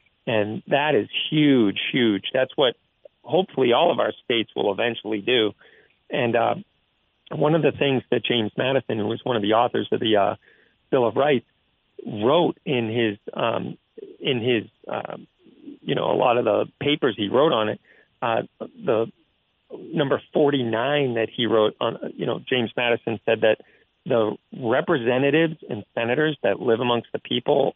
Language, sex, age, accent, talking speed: English, male, 40-59, American, 165 wpm